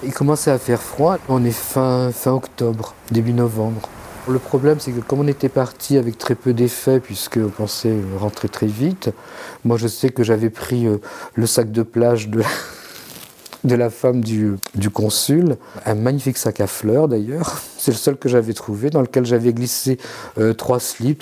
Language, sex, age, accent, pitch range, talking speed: French, male, 50-69, French, 105-125 Hz, 185 wpm